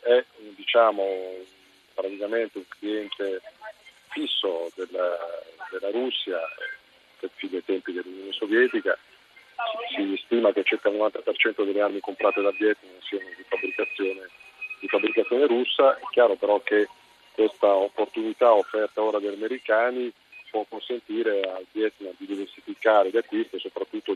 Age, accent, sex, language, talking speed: 40-59, native, male, Italian, 130 wpm